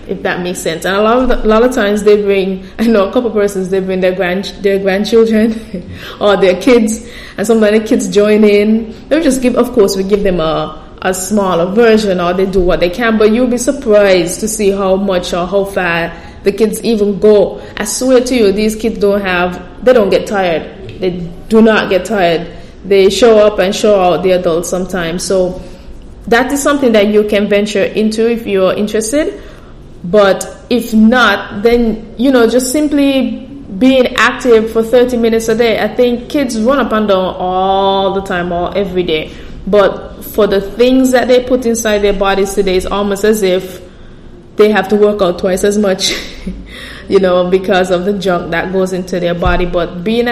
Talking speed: 205 wpm